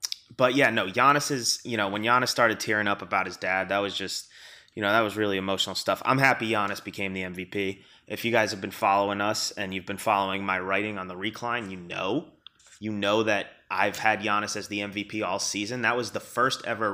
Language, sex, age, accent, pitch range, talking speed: English, male, 20-39, American, 95-115 Hz, 230 wpm